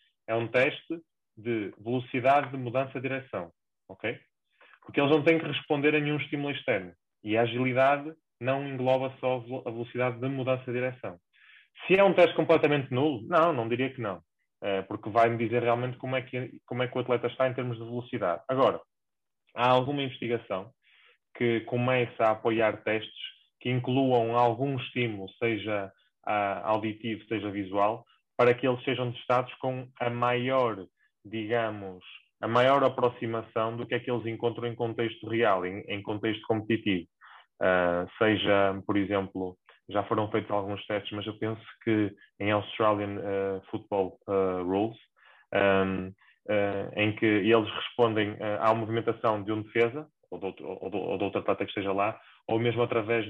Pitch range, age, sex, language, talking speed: 105-125 Hz, 20-39, male, English, 165 wpm